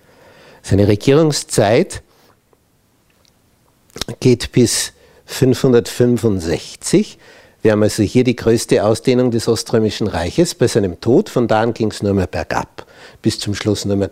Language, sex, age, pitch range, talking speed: German, male, 60-79, 110-150 Hz, 130 wpm